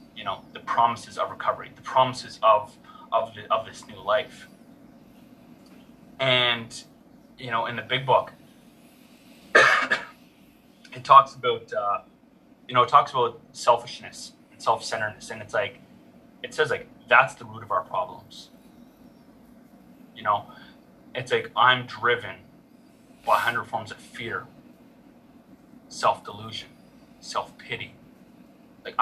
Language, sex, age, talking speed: English, male, 20-39, 125 wpm